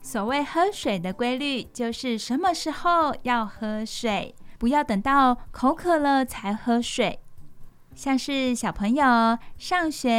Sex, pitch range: female, 215-280 Hz